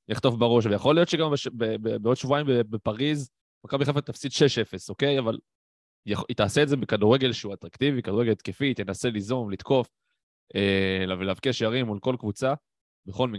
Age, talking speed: 20-39, 45 wpm